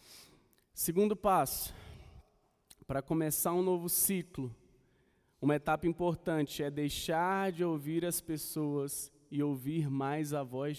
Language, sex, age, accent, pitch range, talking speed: Portuguese, male, 20-39, Brazilian, 135-175 Hz, 115 wpm